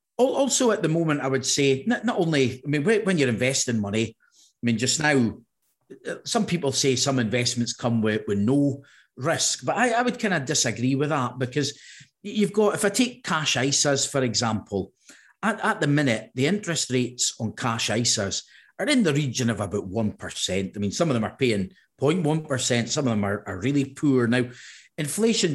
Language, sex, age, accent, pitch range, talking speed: English, male, 40-59, British, 120-150 Hz, 195 wpm